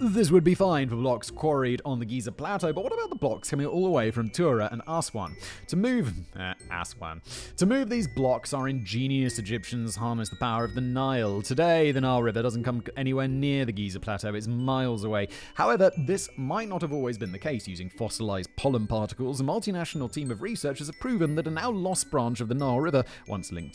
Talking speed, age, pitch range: 215 wpm, 30-49, 105-140 Hz